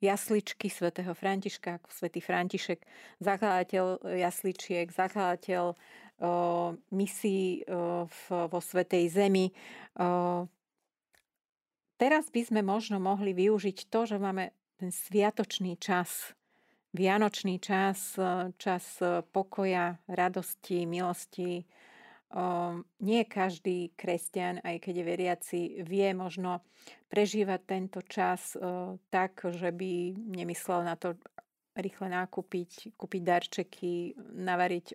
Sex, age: female, 40-59